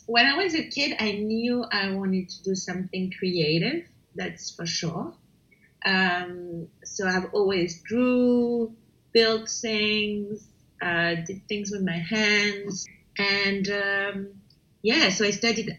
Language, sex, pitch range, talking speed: Italian, female, 180-225 Hz, 135 wpm